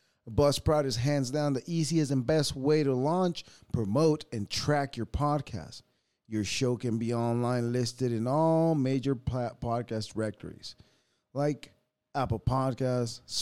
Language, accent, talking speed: English, American, 135 wpm